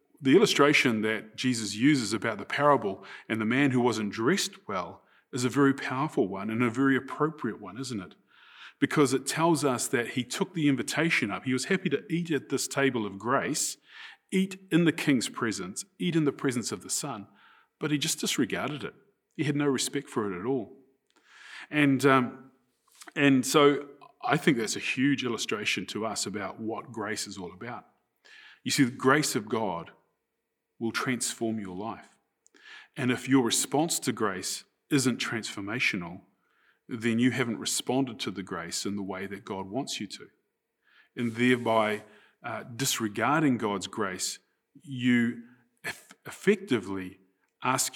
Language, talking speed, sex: English, 165 wpm, male